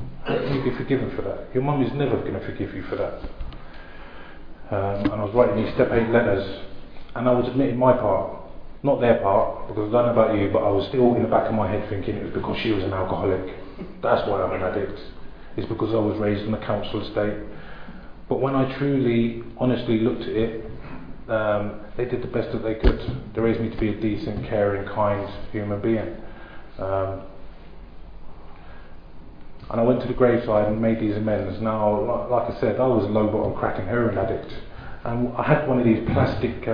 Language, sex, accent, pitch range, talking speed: English, male, British, 105-135 Hz, 205 wpm